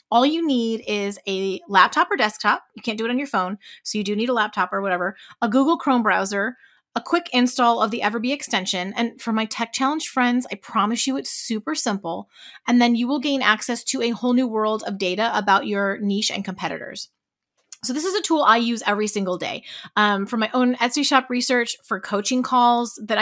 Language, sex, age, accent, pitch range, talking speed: English, female, 30-49, American, 205-245 Hz, 220 wpm